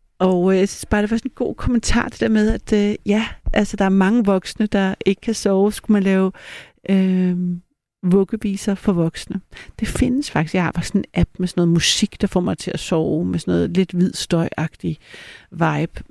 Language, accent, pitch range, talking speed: Danish, native, 175-215 Hz, 210 wpm